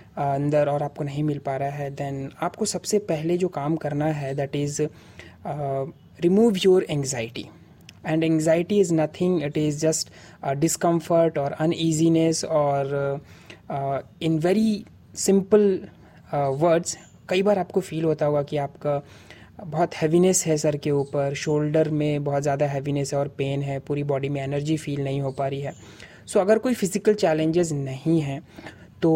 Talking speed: 165 wpm